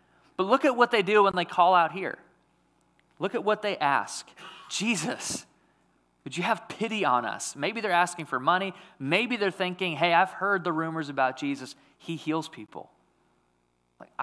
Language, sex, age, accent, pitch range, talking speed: English, male, 30-49, American, 160-200 Hz, 175 wpm